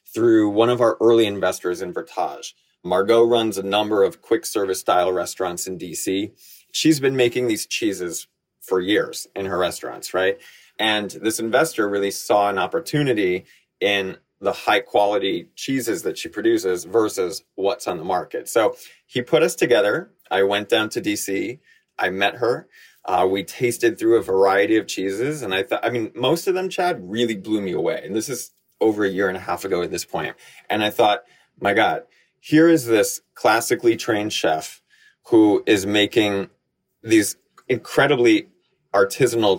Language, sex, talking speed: English, male, 175 wpm